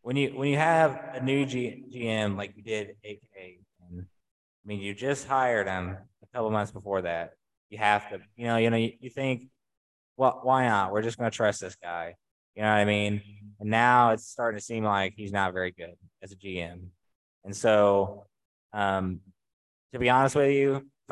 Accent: American